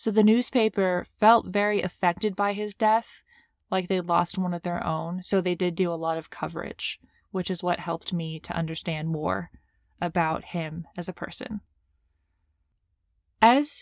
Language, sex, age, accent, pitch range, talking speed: English, female, 20-39, American, 165-215 Hz, 165 wpm